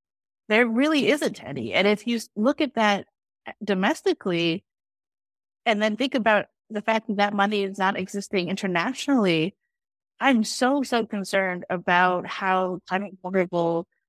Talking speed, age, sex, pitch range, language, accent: 135 wpm, 30-49, female, 185-235 Hz, English, American